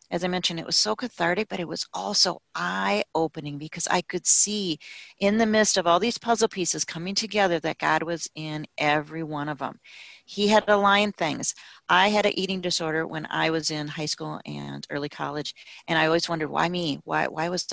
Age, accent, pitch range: 40-59, American, 150-185 Hz